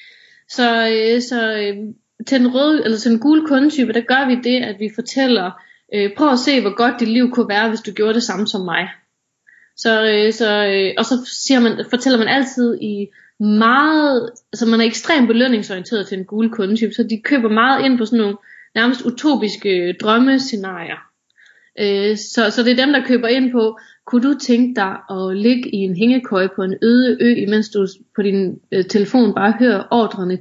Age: 30-49